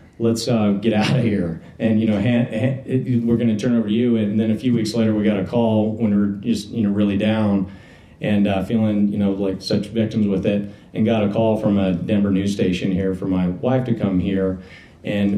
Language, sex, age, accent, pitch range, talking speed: English, male, 40-59, American, 100-115 Hz, 240 wpm